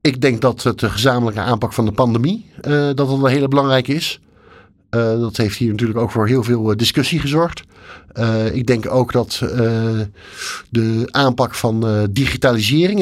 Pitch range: 110-130 Hz